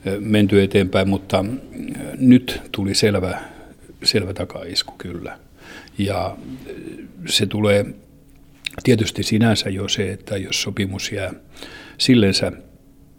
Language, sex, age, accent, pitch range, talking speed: Finnish, male, 60-79, native, 95-110 Hz, 95 wpm